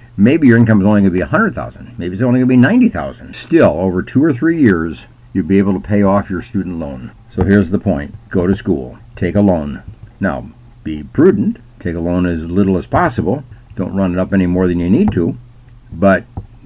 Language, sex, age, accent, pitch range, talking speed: English, male, 60-79, American, 95-120 Hz, 225 wpm